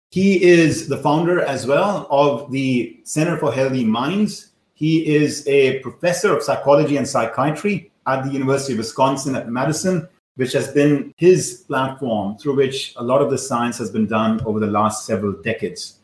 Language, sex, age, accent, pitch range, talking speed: English, male, 30-49, Indian, 130-165 Hz, 175 wpm